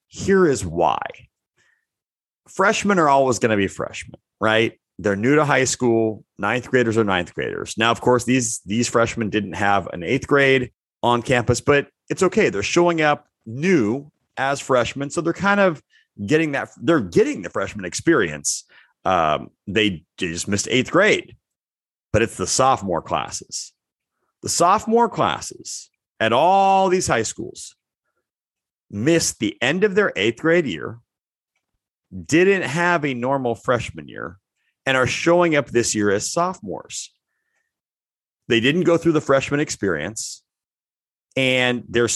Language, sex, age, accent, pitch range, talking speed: English, male, 30-49, American, 110-165 Hz, 150 wpm